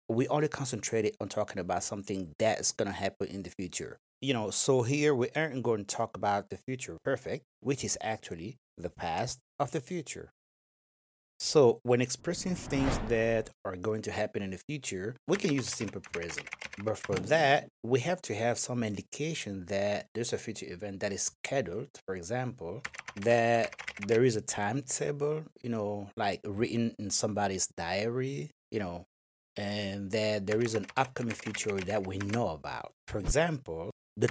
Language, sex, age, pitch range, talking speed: English, male, 30-49, 100-130 Hz, 175 wpm